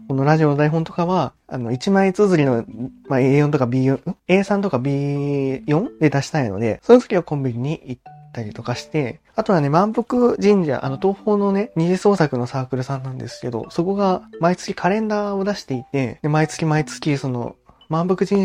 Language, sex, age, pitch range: Japanese, male, 20-39, 125-190 Hz